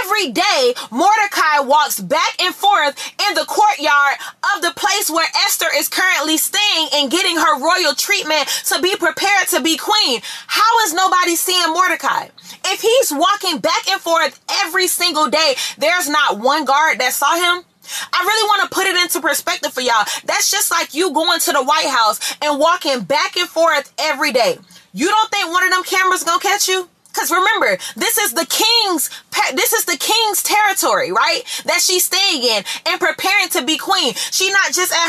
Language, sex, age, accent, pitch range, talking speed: English, female, 20-39, American, 300-385 Hz, 190 wpm